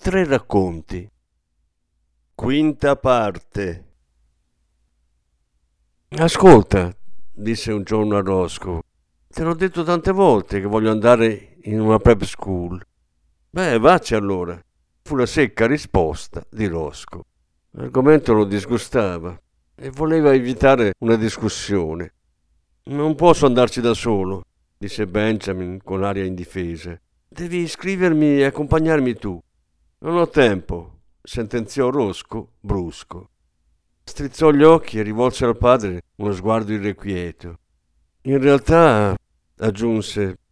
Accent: native